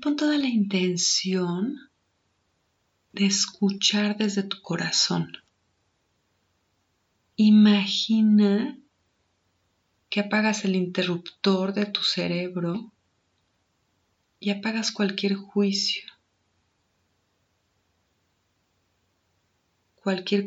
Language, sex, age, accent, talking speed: Spanish, female, 40-59, Mexican, 65 wpm